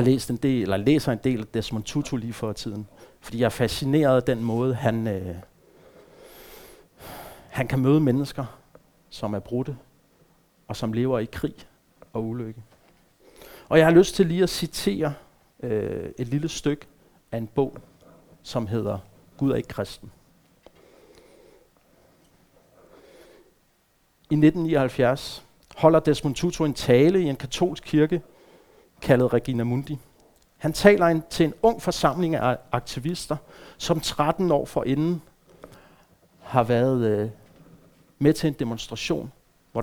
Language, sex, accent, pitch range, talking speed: Danish, male, native, 115-155 Hz, 140 wpm